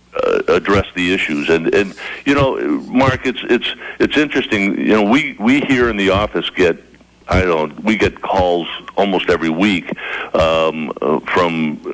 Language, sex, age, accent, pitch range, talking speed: English, male, 60-79, American, 80-95 Hz, 150 wpm